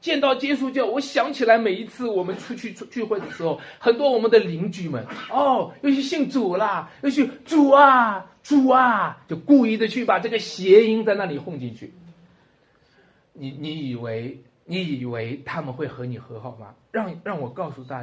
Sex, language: male, Chinese